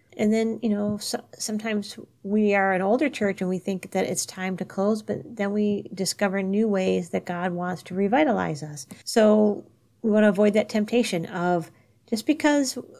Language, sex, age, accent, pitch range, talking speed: English, female, 40-59, American, 185-220 Hz, 185 wpm